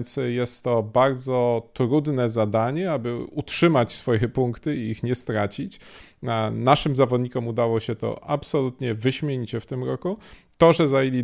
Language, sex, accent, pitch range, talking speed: Polish, male, native, 115-135 Hz, 145 wpm